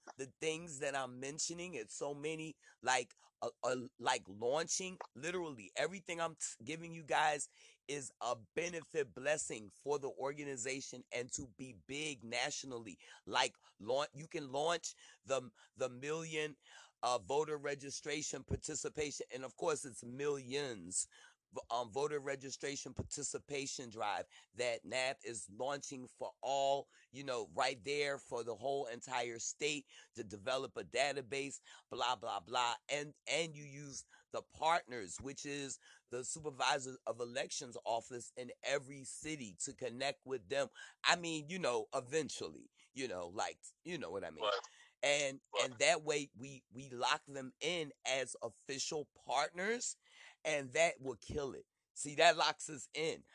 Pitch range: 135-160 Hz